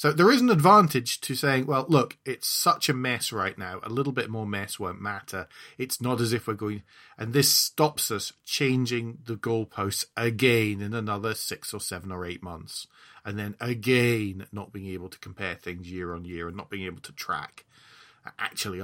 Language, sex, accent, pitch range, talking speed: English, male, British, 100-140 Hz, 200 wpm